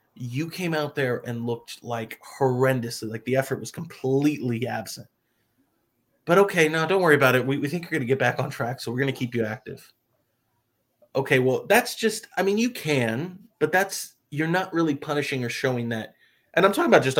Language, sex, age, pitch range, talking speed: English, male, 30-49, 120-160 Hz, 210 wpm